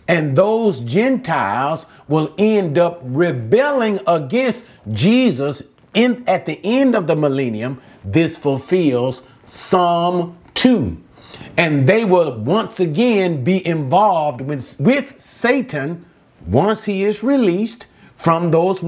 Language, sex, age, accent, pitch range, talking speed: English, male, 50-69, American, 135-210 Hz, 110 wpm